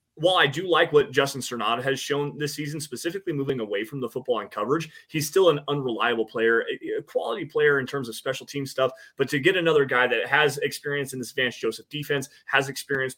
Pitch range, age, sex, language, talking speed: 120-165 Hz, 20-39, male, English, 220 wpm